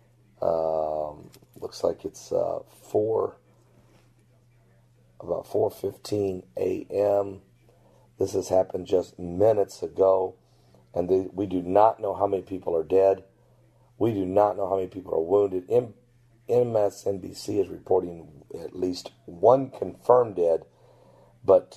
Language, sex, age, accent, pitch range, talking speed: English, male, 50-69, American, 90-120 Hz, 120 wpm